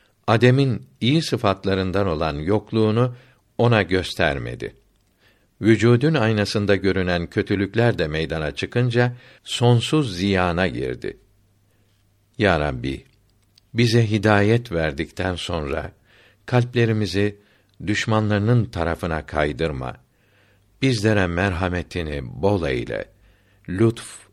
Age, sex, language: 60-79, male, Turkish